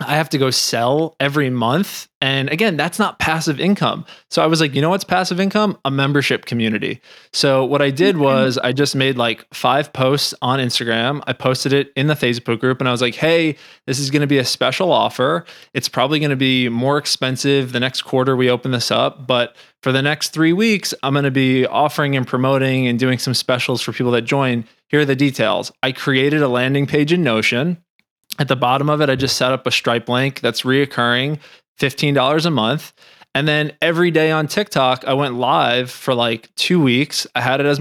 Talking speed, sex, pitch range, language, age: 215 wpm, male, 130-155 Hz, English, 20-39